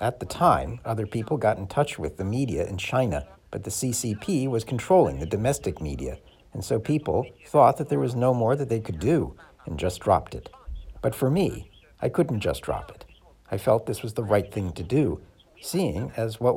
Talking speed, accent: 210 wpm, American